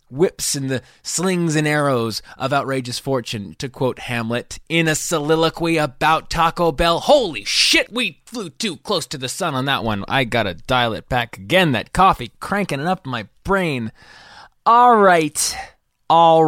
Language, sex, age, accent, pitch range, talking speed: English, male, 20-39, American, 100-140 Hz, 170 wpm